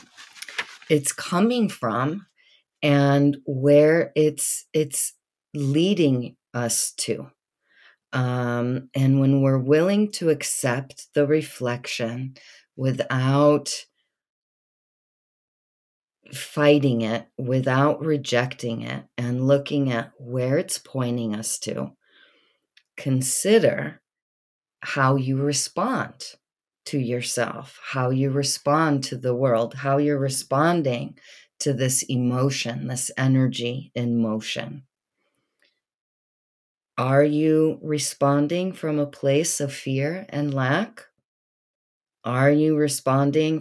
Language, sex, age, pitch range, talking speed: English, female, 40-59, 125-145 Hz, 95 wpm